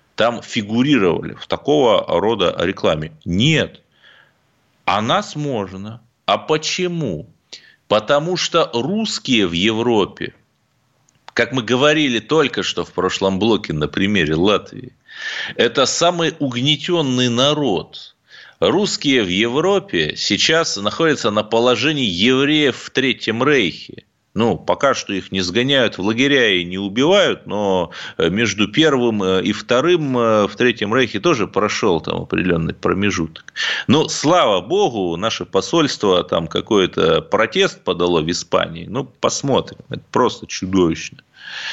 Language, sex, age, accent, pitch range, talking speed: Russian, male, 30-49, native, 100-145 Hz, 120 wpm